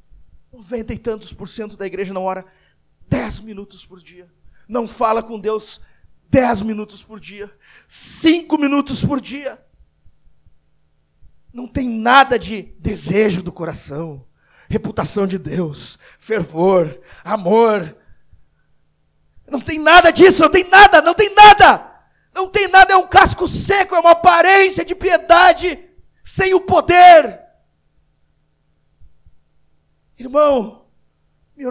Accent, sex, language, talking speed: Brazilian, male, Portuguese, 120 wpm